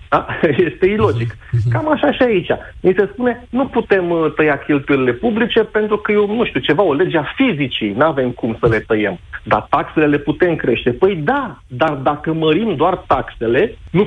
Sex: male